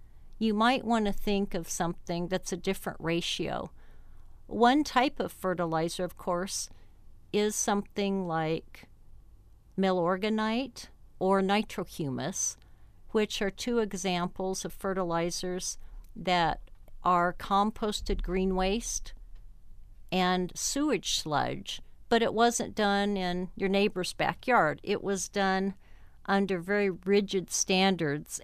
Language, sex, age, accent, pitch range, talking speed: English, female, 50-69, American, 170-205 Hz, 110 wpm